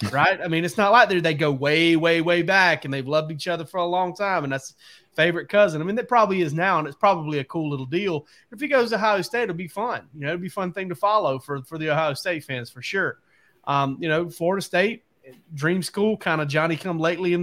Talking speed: 260 wpm